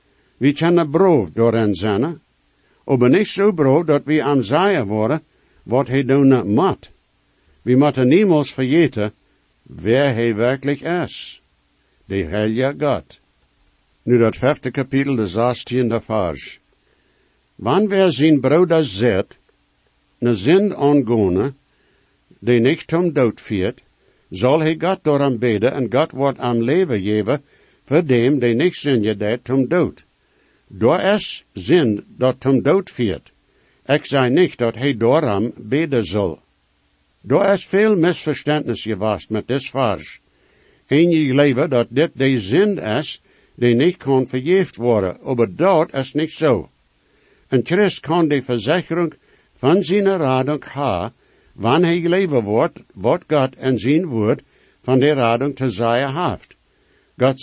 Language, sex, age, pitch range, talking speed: English, male, 60-79, 115-155 Hz, 140 wpm